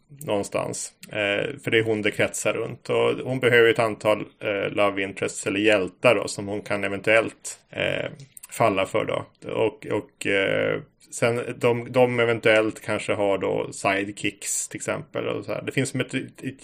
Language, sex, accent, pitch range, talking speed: Swedish, male, Norwegian, 110-135 Hz, 175 wpm